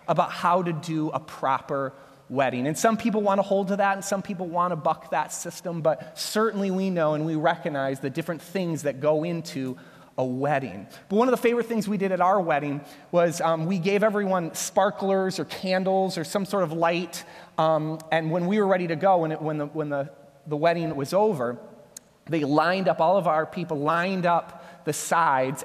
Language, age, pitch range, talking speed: English, 30-49, 140-175 Hz, 210 wpm